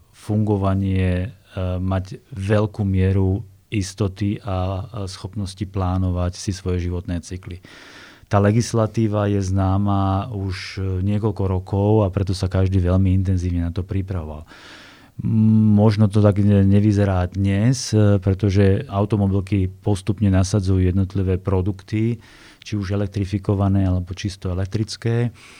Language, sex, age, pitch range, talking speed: Slovak, male, 30-49, 95-105 Hz, 105 wpm